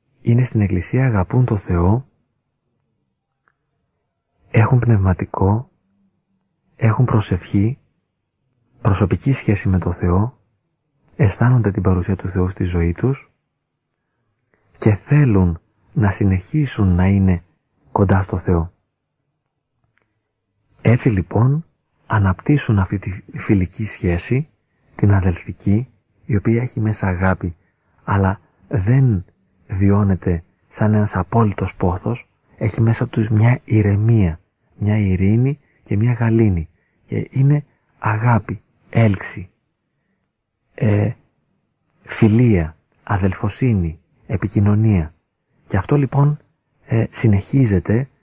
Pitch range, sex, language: 95-125 Hz, male, Greek